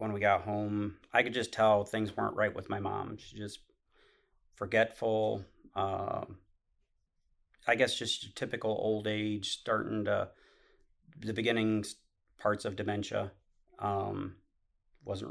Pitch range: 100-110 Hz